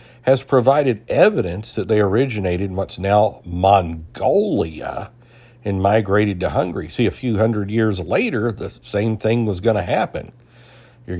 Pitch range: 95-120 Hz